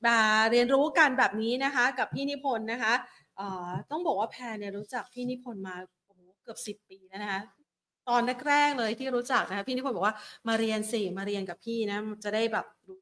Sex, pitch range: female, 210-255 Hz